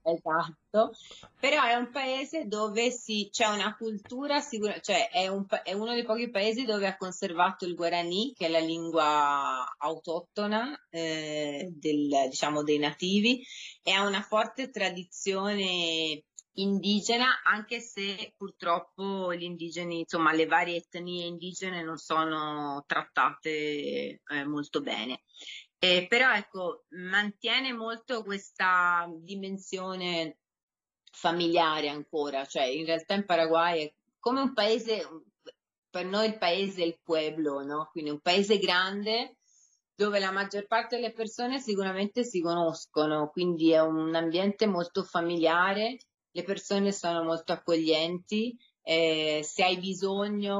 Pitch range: 160-210 Hz